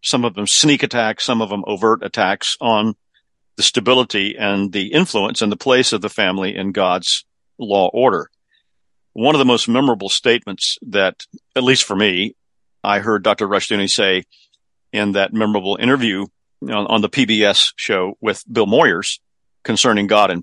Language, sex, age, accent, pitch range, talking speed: English, male, 50-69, American, 100-120 Hz, 165 wpm